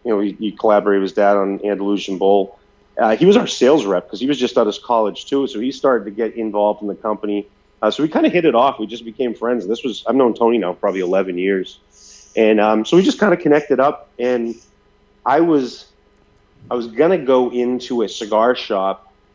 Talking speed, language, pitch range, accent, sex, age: 235 wpm, English, 95-115 Hz, American, male, 30-49